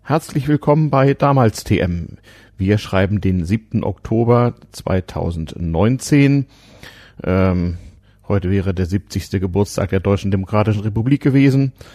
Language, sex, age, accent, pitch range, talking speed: German, male, 40-59, German, 95-135 Hz, 110 wpm